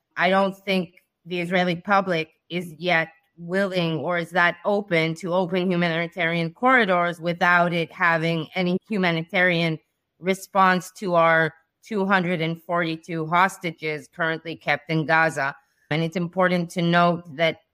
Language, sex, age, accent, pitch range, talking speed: English, female, 30-49, American, 165-190 Hz, 125 wpm